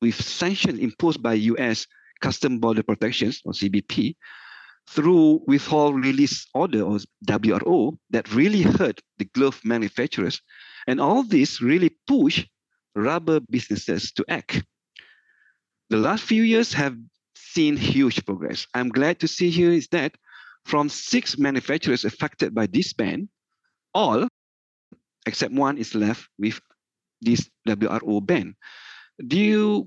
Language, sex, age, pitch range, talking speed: English, male, 50-69, 110-160 Hz, 125 wpm